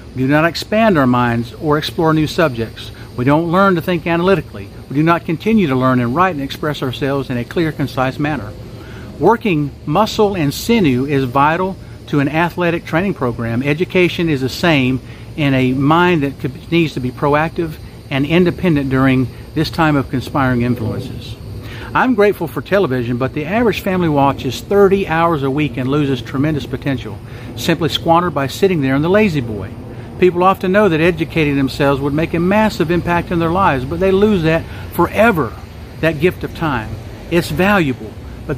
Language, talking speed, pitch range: English, 175 wpm, 125-170 Hz